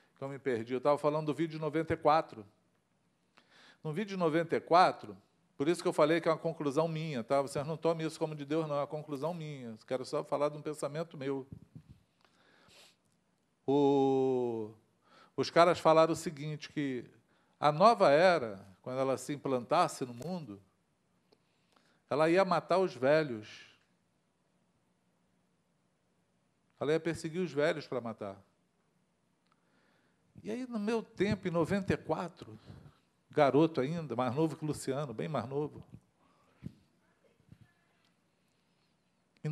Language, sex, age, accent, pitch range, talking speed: Portuguese, male, 50-69, Brazilian, 130-175 Hz, 135 wpm